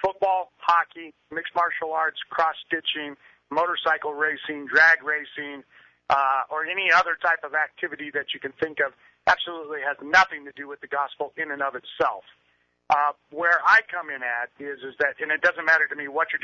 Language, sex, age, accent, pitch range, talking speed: English, male, 40-59, American, 140-170 Hz, 185 wpm